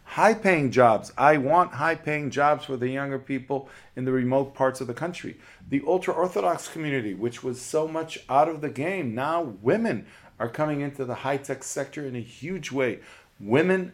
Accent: American